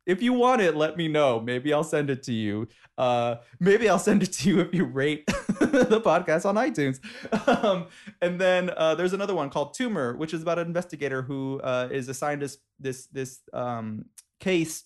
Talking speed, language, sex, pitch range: 200 wpm, English, male, 125-170 Hz